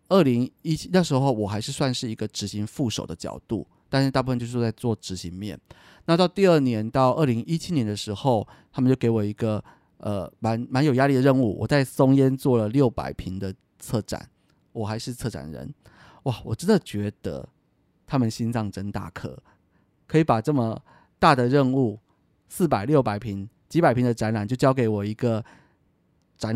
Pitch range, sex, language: 110-135 Hz, male, Chinese